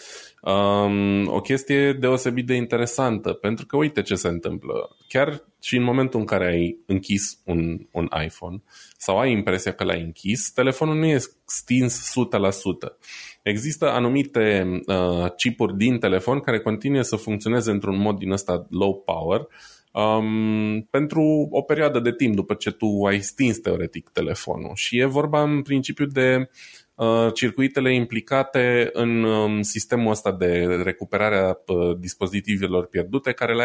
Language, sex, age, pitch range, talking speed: Romanian, male, 20-39, 95-125 Hz, 145 wpm